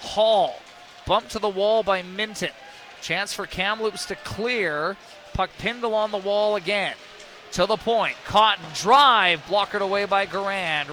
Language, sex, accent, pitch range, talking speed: English, male, American, 180-210 Hz, 150 wpm